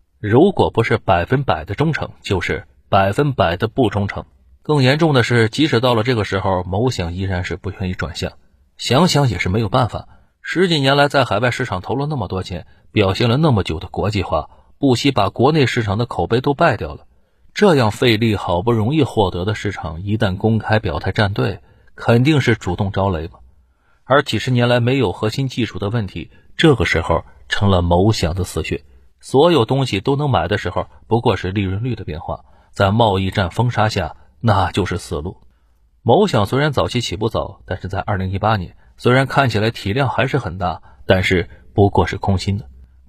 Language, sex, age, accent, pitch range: Chinese, male, 30-49, native, 90-120 Hz